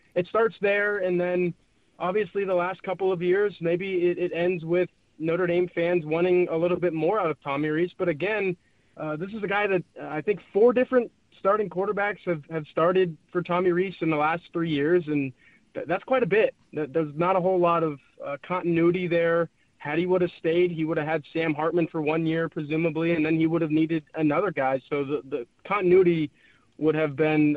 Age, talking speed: 20-39, 210 wpm